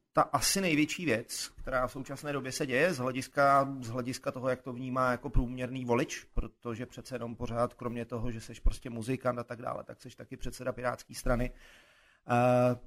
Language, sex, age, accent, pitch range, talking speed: Czech, male, 30-49, native, 115-140 Hz, 190 wpm